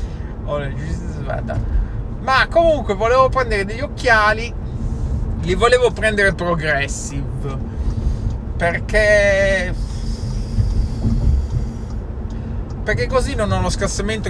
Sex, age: male, 30-49